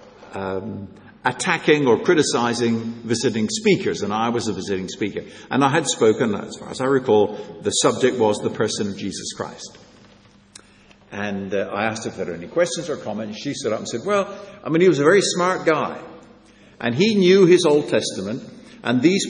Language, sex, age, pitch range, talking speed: English, male, 60-79, 115-170 Hz, 195 wpm